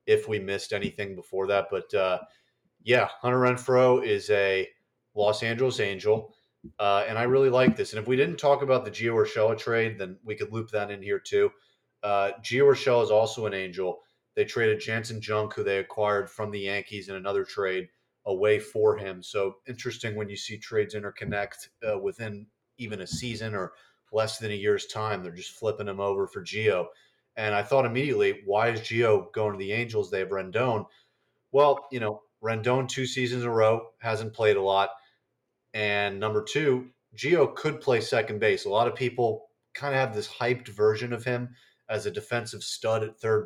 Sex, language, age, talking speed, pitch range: male, English, 30-49, 195 wpm, 105-130 Hz